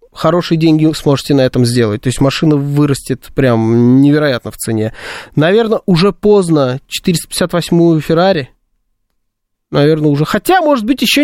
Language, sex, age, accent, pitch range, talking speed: Russian, male, 20-39, native, 130-190 Hz, 135 wpm